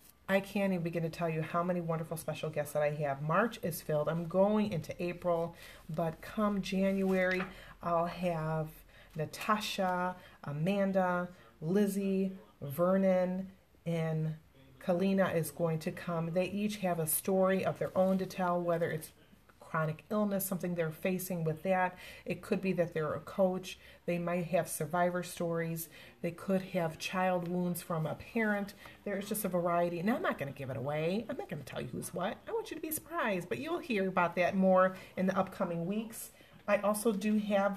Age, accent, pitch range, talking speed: 30-49, American, 170-200 Hz, 185 wpm